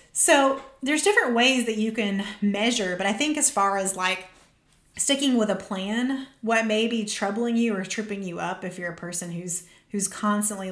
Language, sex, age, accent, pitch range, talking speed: English, female, 30-49, American, 185-235 Hz, 195 wpm